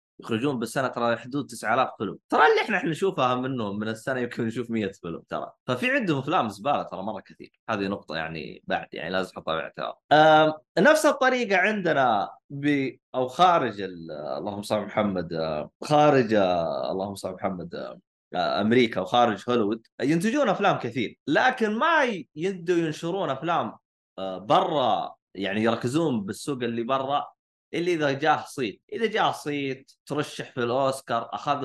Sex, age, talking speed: male, 20-39, 155 wpm